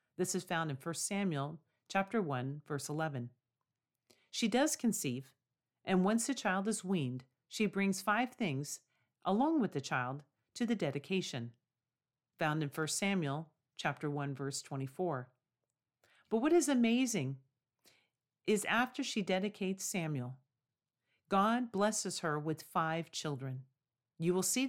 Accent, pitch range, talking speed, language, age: American, 140-195 Hz, 135 wpm, English, 40-59